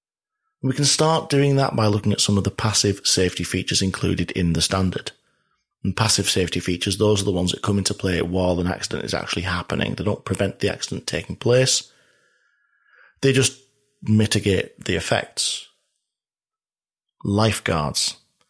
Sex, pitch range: male, 95-115 Hz